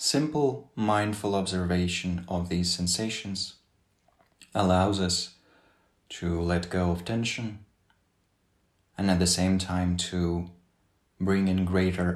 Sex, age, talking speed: male, 30-49, 110 wpm